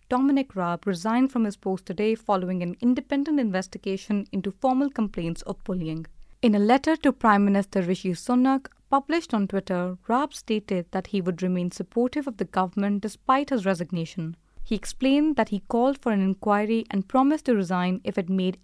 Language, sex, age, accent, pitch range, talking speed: English, female, 30-49, Indian, 190-255 Hz, 175 wpm